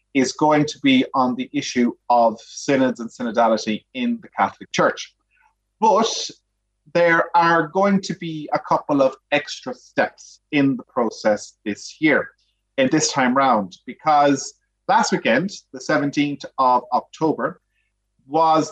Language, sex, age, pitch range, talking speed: English, male, 30-49, 120-175 Hz, 140 wpm